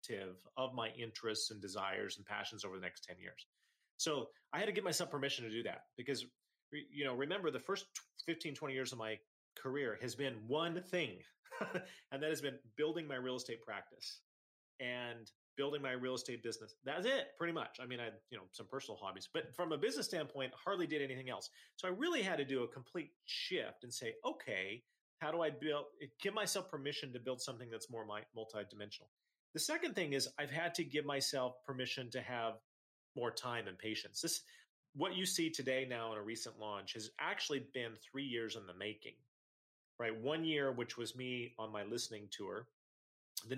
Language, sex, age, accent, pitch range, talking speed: English, male, 30-49, American, 110-150 Hz, 200 wpm